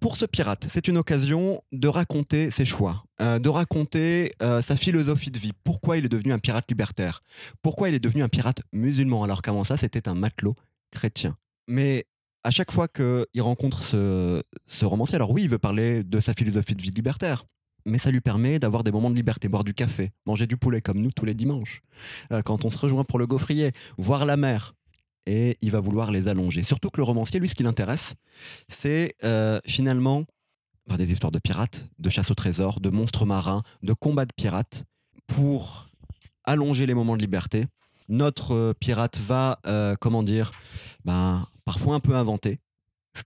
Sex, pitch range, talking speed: male, 105-135 Hz, 195 wpm